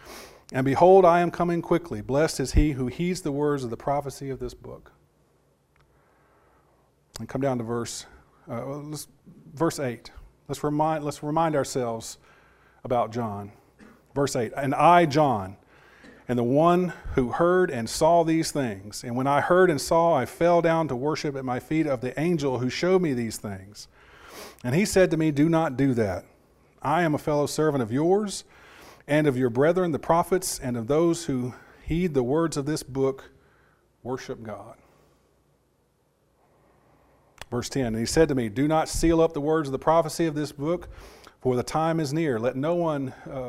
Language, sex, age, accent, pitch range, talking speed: English, male, 40-59, American, 130-160 Hz, 180 wpm